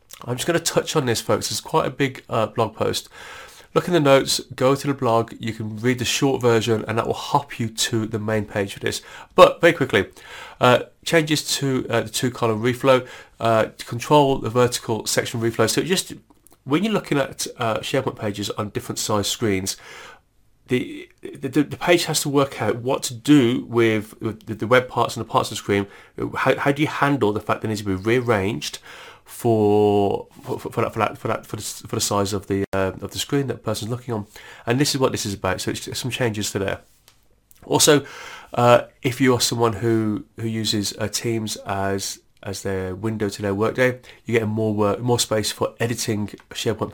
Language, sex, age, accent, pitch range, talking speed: English, male, 30-49, British, 105-135 Hz, 215 wpm